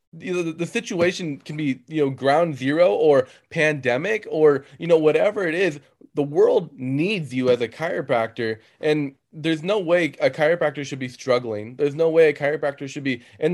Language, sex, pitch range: English, male, 130-165 Hz